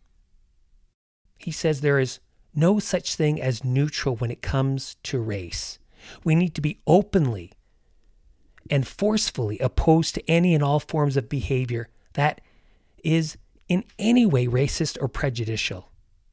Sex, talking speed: male, 135 wpm